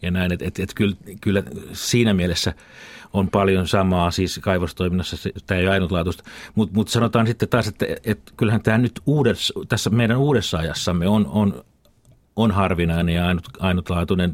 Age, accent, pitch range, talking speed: 50-69, native, 95-110 Hz, 170 wpm